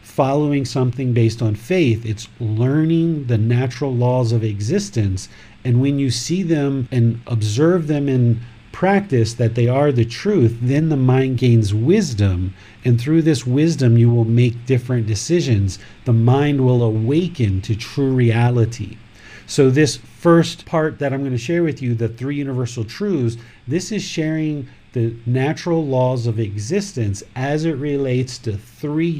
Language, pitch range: English, 115-150 Hz